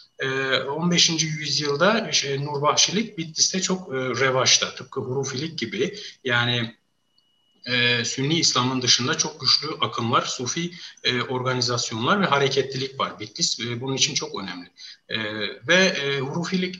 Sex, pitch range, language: male, 130-180 Hz, Turkish